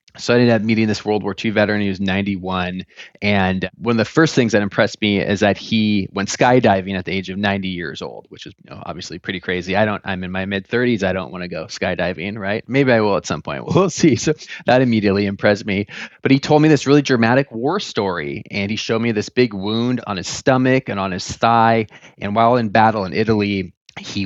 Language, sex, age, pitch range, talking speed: English, male, 20-39, 100-125 Hz, 230 wpm